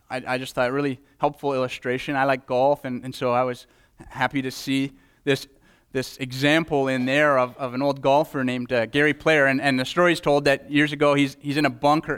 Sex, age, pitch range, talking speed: male, 30-49, 125-150 Hz, 225 wpm